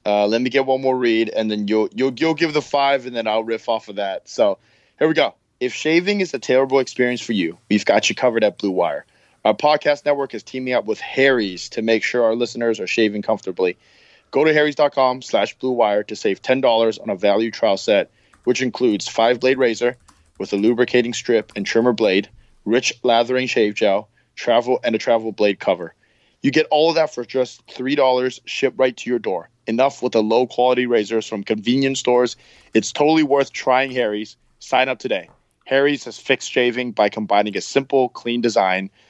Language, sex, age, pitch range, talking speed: English, male, 20-39, 110-135 Hz, 205 wpm